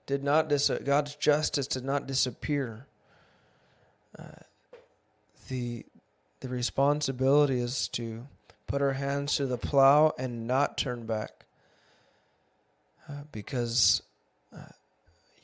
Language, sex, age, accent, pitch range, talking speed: English, male, 20-39, American, 120-150 Hz, 105 wpm